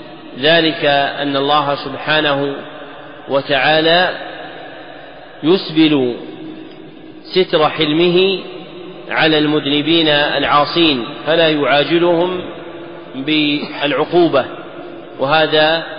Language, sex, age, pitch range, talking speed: Arabic, male, 40-59, 140-160 Hz, 55 wpm